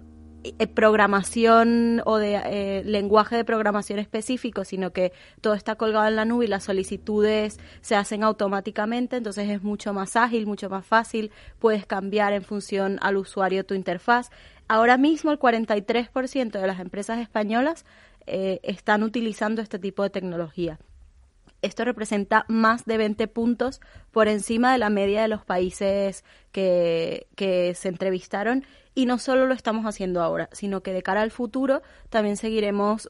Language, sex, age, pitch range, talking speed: Spanish, female, 20-39, 200-235 Hz, 155 wpm